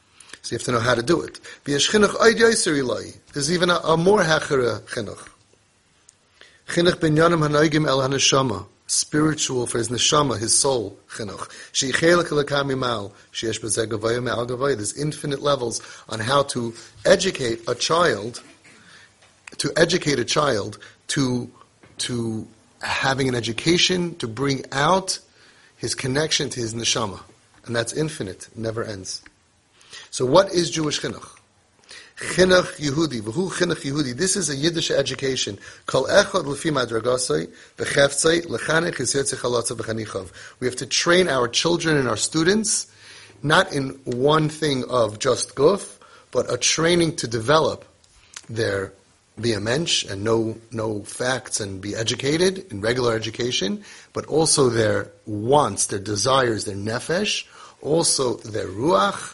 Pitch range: 115-160 Hz